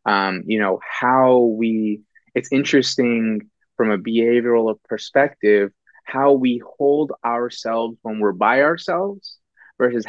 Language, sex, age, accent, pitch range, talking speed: English, male, 20-39, American, 105-120 Hz, 120 wpm